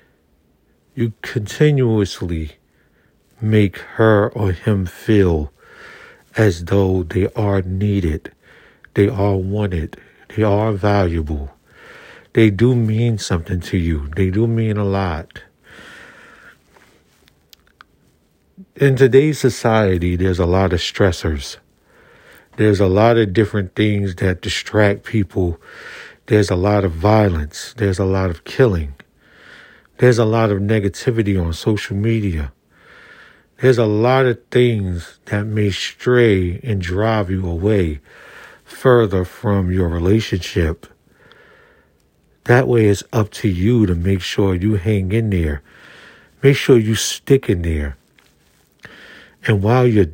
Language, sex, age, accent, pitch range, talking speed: English, male, 60-79, American, 85-110 Hz, 120 wpm